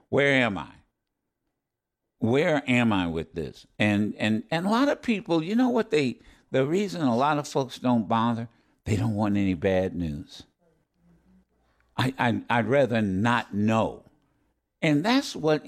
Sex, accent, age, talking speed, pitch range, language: male, American, 60-79, 160 wpm, 110-165 Hz, English